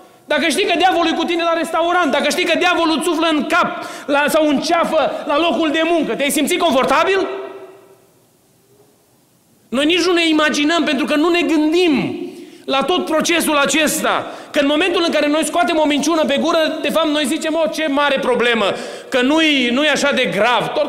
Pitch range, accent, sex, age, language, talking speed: 245-335 Hz, native, male, 30-49, Romanian, 195 wpm